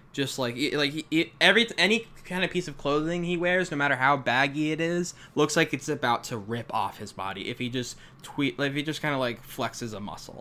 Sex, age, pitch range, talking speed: male, 10-29, 115-160 Hz, 250 wpm